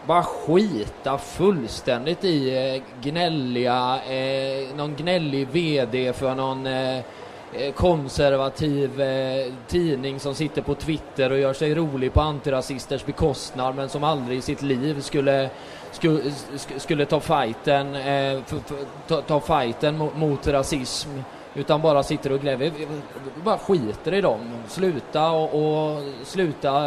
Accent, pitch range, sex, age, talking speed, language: native, 130-155 Hz, male, 20-39, 120 wpm, Swedish